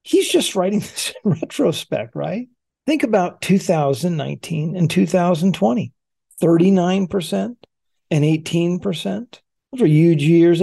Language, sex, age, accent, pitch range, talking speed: English, male, 50-69, American, 150-195 Hz, 95 wpm